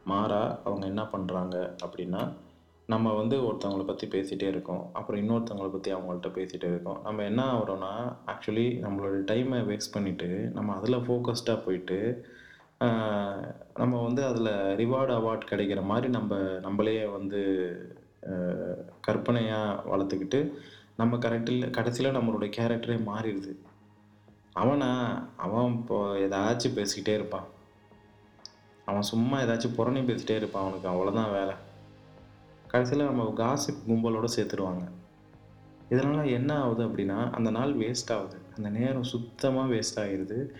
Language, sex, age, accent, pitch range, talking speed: Tamil, male, 20-39, native, 100-120 Hz, 120 wpm